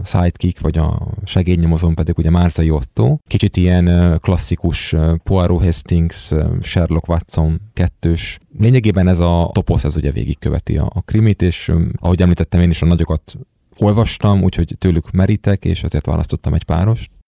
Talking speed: 145 wpm